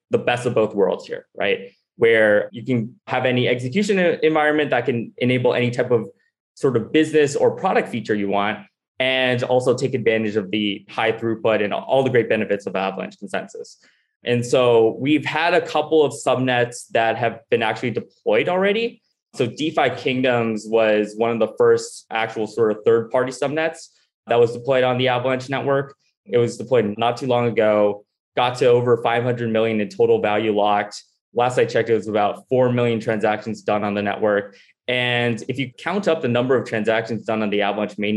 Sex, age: male, 20-39